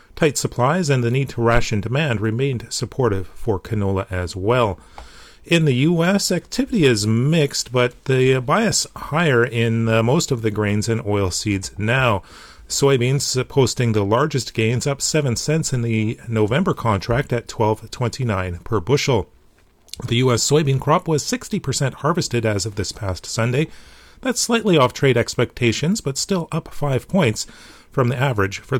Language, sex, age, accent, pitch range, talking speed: English, male, 40-59, American, 110-145 Hz, 155 wpm